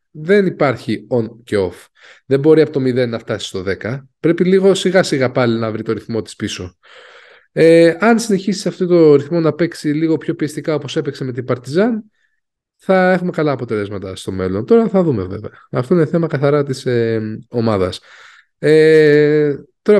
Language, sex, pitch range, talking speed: Greek, male, 115-155 Hz, 180 wpm